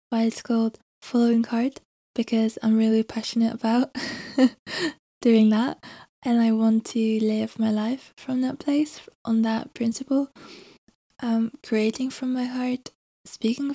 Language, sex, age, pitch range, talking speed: English, female, 10-29, 225-260 Hz, 135 wpm